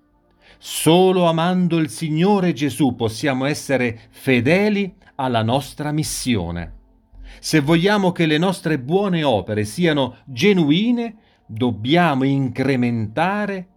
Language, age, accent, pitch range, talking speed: Italian, 40-59, native, 115-165 Hz, 95 wpm